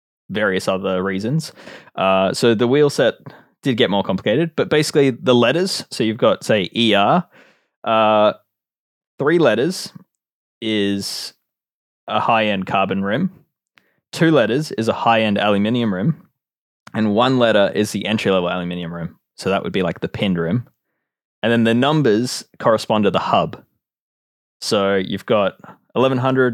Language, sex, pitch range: English, male, 100-125 Hz